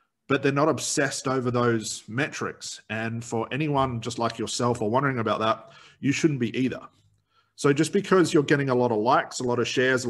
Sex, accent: male, Australian